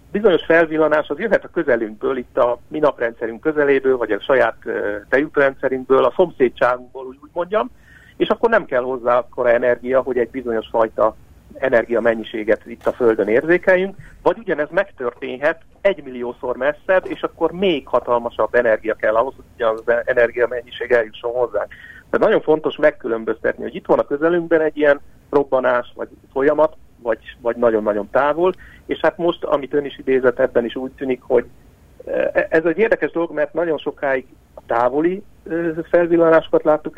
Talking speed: 150 wpm